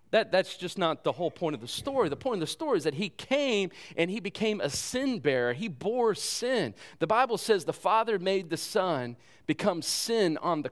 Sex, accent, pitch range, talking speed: male, American, 150-215 Hz, 220 wpm